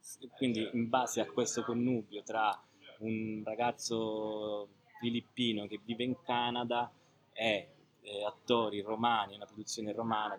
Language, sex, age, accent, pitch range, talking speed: Italian, male, 20-39, native, 105-115 Hz, 115 wpm